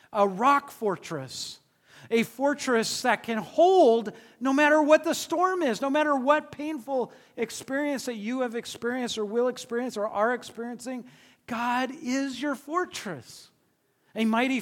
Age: 40-59